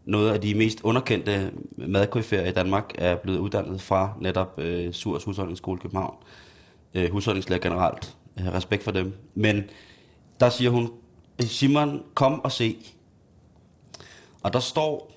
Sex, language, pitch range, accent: male, Danish, 95-120 Hz, native